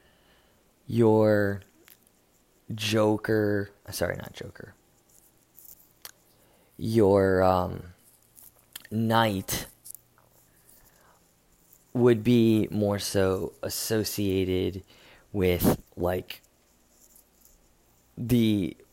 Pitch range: 85-110 Hz